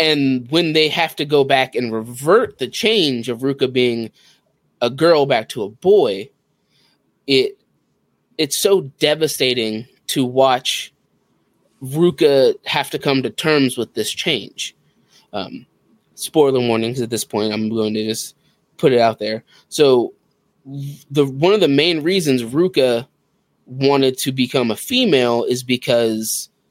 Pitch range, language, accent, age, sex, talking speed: 120-150 Hz, English, American, 20-39, male, 145 wpm